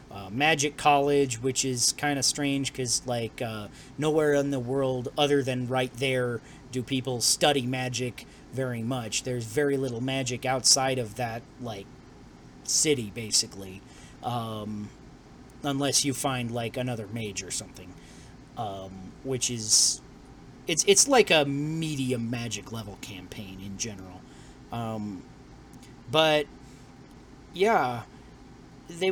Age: 30-49